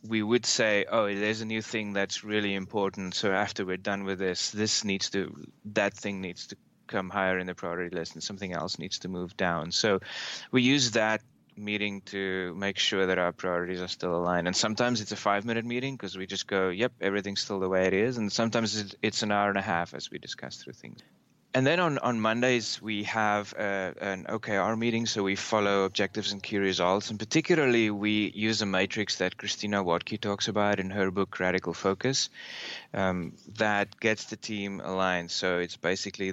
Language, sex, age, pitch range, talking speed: English, male, 30-49, 95-110 Hz, 205 wpm